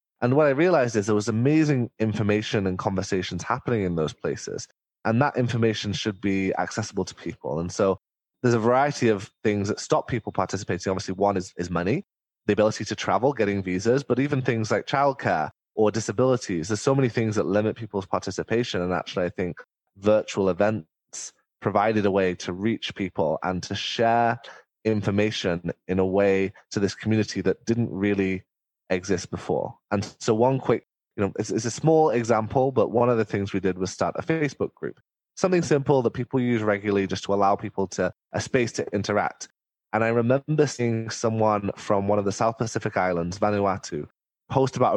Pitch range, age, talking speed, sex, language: 95-125 Hz, 20-39, 185 wpm, male, English